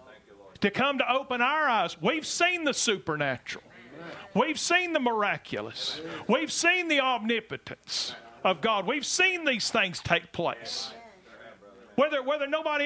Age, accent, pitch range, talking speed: 40-59, American, 220-290 Hz, 135 wpm